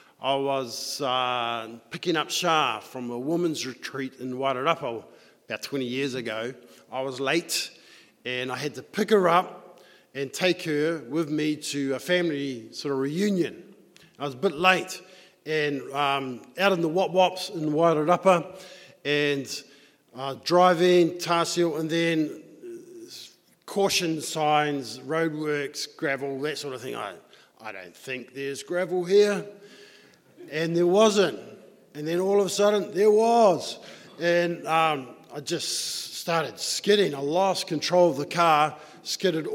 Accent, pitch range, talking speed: Australian, 140-185 Hz, 145 wpm